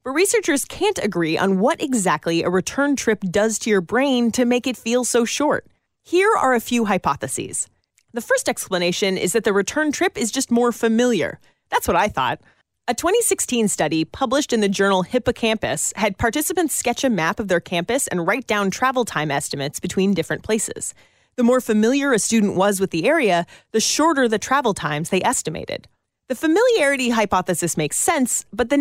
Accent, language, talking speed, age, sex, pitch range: American, English, 185 wpm, 30-49, female, 185-275 Hz